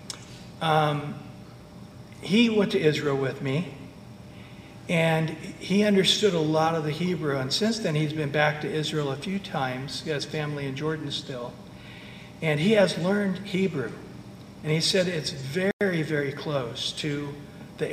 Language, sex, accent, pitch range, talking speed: English, male, American, 150-195 Hz, 155 wpm